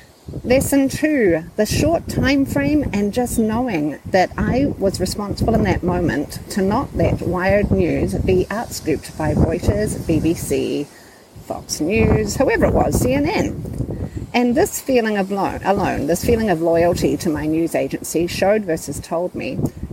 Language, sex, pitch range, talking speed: English, female, 170-270 Hz, 150 wpm